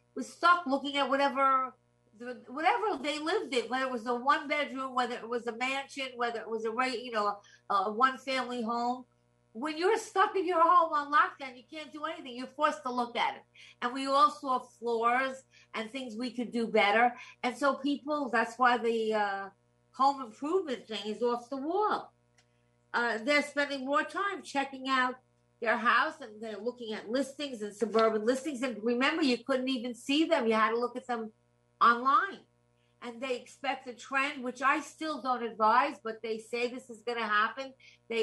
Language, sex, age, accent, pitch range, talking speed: English, female, 50-69, American, 225-275 Hz, 195 wpm